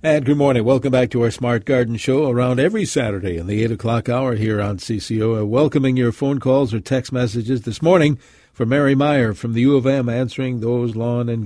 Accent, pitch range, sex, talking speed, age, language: American, 115-155 Hz, male, 225 wpm, 50-69, English